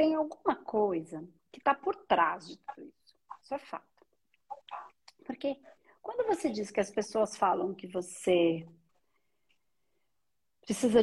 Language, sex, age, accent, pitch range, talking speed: Portuguese, female, 40-59, Brazilian, 200-275 Hz, 130 wpm